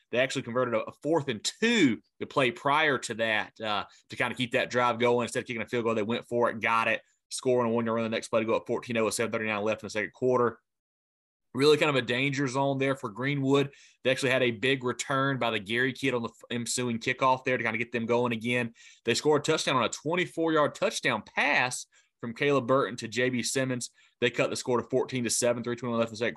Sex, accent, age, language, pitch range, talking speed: male, American, 20-39, English, 115-135 Hz, 245 wpm